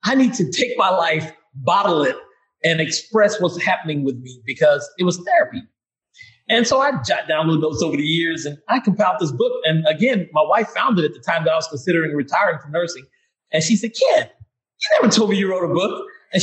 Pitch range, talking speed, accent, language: 160-210 Hz, 230 wpm, American, English